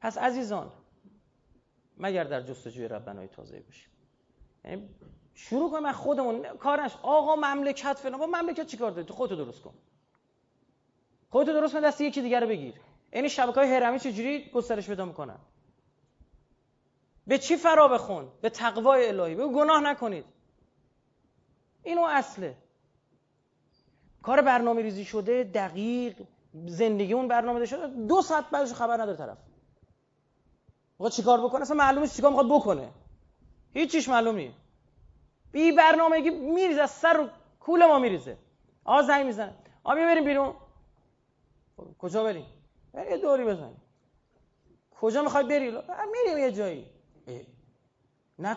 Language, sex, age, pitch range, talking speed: Persian, male, 30-49, 180-285 Hz, 130 wpm